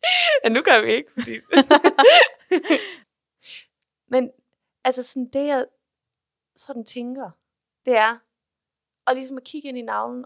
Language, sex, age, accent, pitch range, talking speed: Danish, female, 30-49, native, 210-255 Hz, 130 wpm